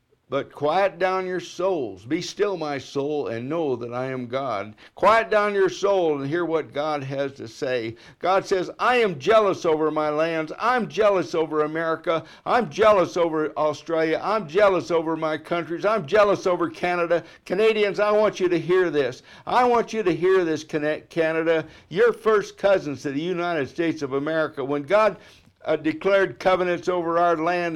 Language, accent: English, American